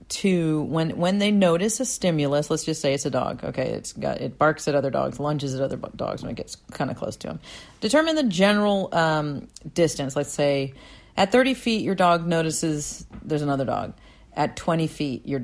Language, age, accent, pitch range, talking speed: English, 40-59, American, 135-185 Hz, 205 wpm